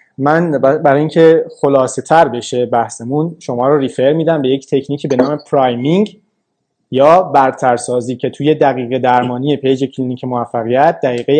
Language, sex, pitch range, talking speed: Persian, male, 125-160 Hz, 140 wpm